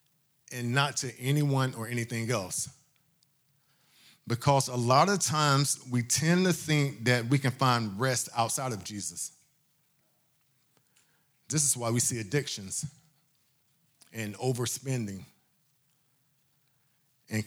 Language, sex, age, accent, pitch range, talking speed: English, male, 40-59, American, 110-145 Hz, 115 wpm